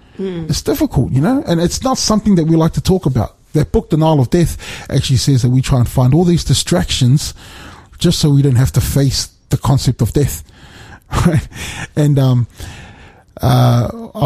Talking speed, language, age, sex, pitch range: 185 wpm, English, 30-49, male, 125-160 Hz